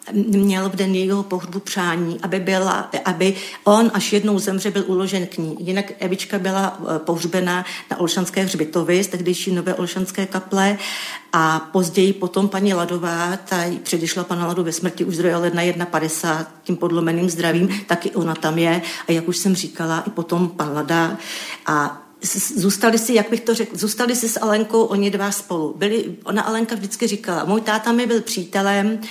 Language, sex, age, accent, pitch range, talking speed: Czech, female, 40-59, native, 180-215 Hz, 170 wpm